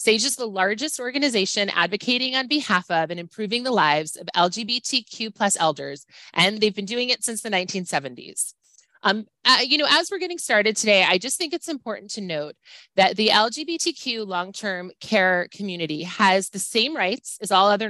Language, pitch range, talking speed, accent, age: English, 175-240 Hz, 180 wpm, American, 30-49